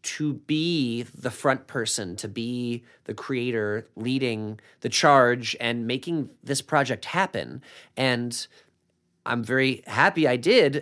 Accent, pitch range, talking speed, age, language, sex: American, 110-140 Hz, 130 wpm, 30-49, English, male